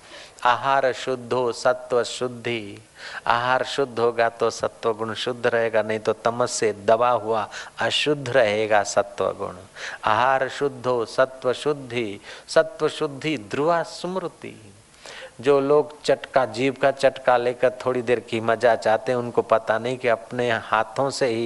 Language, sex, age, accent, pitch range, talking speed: Hindi, male, 50-69, native, 110-135 Hz, 115 wpm